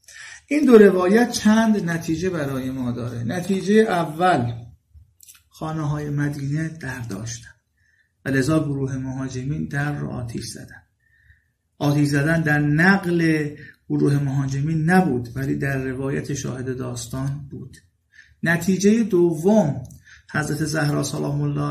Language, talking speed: Persian, 115 wpm